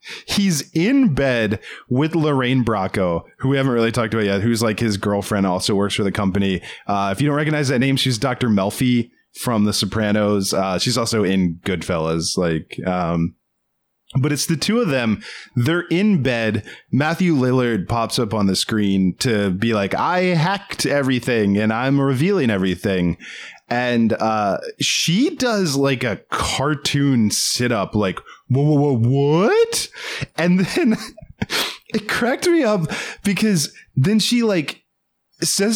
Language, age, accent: English, 20-39, American